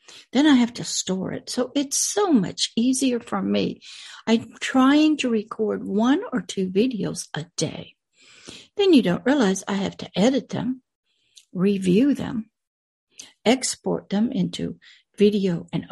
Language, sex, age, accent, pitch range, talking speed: English, female, 60-79, American, 190-250 Hz, 145 wpm